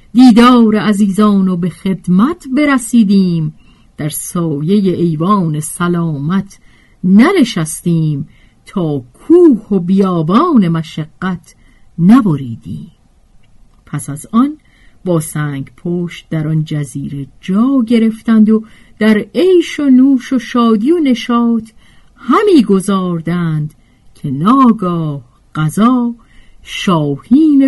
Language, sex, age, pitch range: Persian, female, 50-69, 155-225 Hz